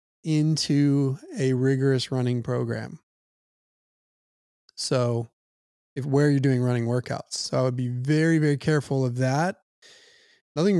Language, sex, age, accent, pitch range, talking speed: English, male, 20-39, American, 130-155 Hz, 120 wpm